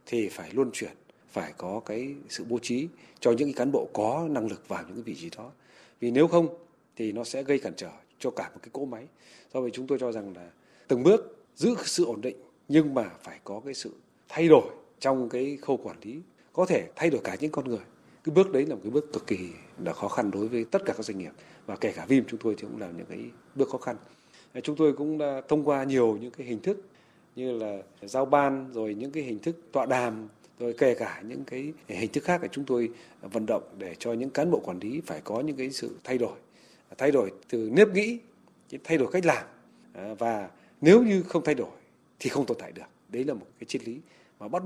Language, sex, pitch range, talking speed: Vietnamese, male, 115-150 Hz, 245 wpm